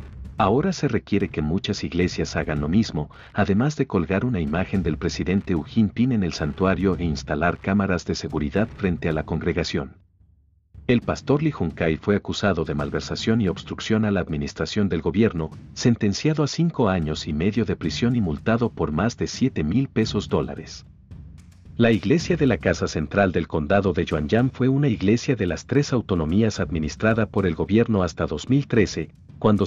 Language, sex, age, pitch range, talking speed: Spanish, male, 50-69, 85-115 Hz, 175 wpm